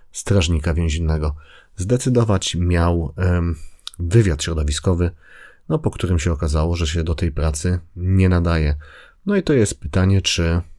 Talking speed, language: 130 wpm, Polish